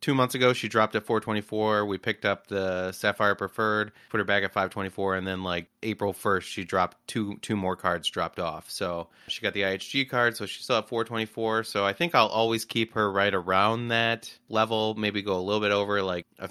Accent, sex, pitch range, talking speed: American, male, 95-110 Hz, 220 wpm